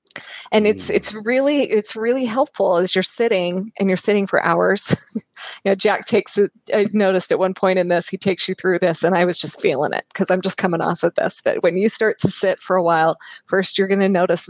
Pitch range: 180-205 Hz